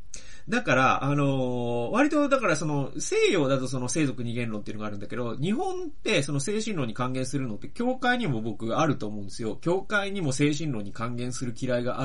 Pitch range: 110-155 Hz